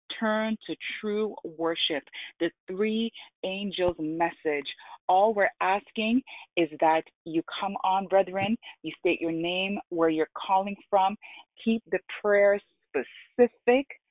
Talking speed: 125 wpm